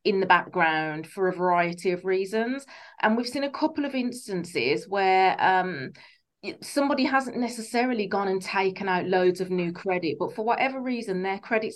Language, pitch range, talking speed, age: English, 175-220 Hz, 175 wpm, 30-49